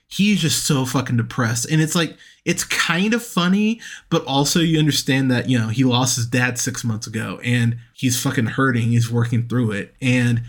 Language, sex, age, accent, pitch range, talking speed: English, male, 20-39, American, 120-150 Hz, 200 wpm